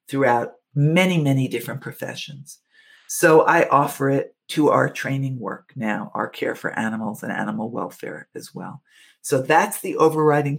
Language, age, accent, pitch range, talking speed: English, 50-69, American, 125-150 Hz, 155 wpm